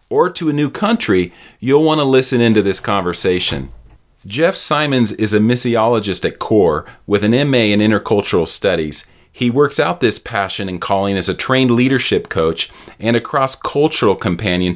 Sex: male